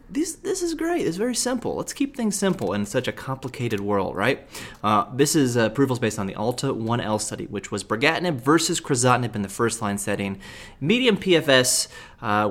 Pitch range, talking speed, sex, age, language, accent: 105-140 Hz, 190 wpm, male, 30-49, English, American